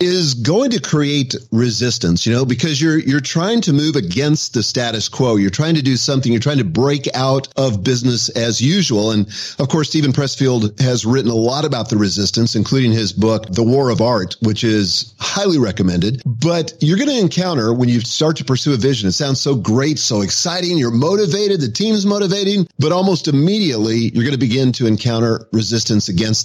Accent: American